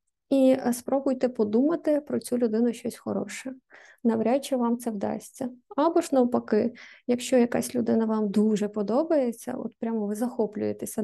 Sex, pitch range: female, 225-255 Hz